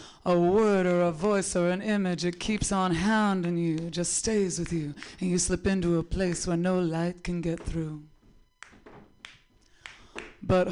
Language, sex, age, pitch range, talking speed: English, female, 30-49, 170-195 Hz, 170 wpm